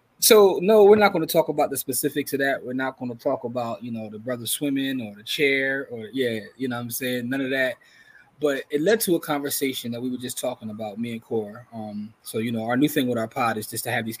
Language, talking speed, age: English, 280 wpm, 20-39